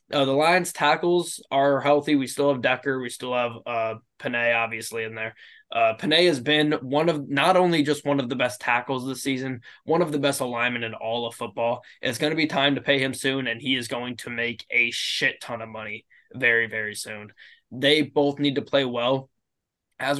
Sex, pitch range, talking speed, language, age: male, 115-145 Hz, 215 wpm, English, 20-39